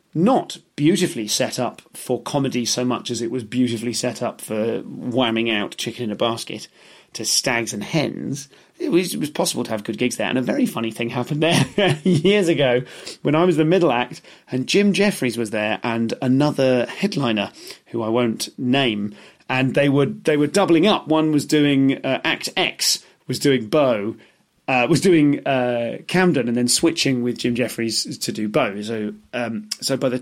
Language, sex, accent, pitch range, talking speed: English, male, British, 120-160 Hz, 195 wpm